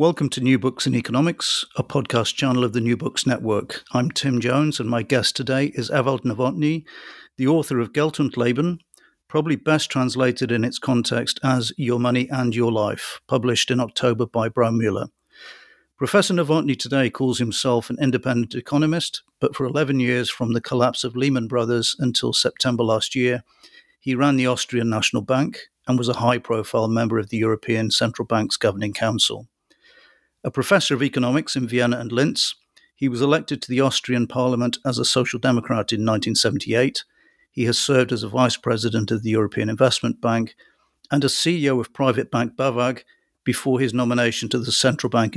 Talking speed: 175 wpm